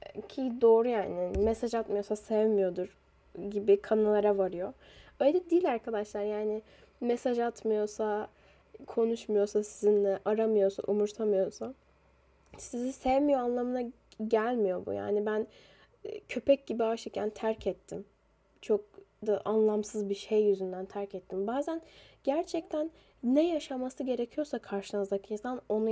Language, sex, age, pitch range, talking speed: Turkish, female, 10-29, 200-250 Hz, 110 wpm